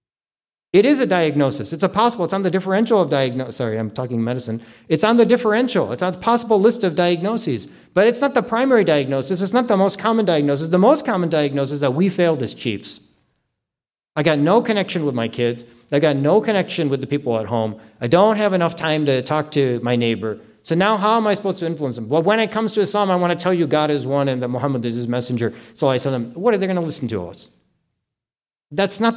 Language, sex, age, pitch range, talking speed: English, male, 40-59, 145-215 Hz, 245 wpm